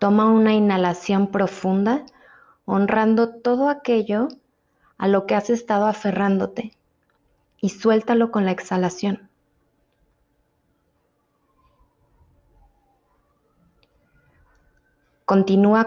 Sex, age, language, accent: female, 30-49, Spanish, Mexican